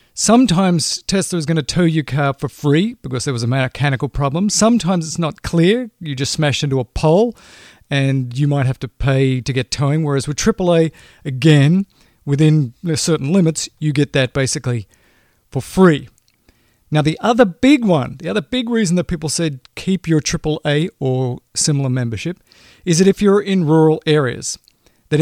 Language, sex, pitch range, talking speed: English, male, 135-170 Hz, 175 wpm